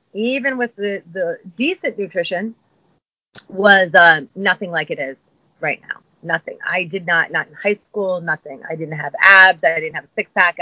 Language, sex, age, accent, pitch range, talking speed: English, female, 30-49, American, 160-195 Hz, 185 wpm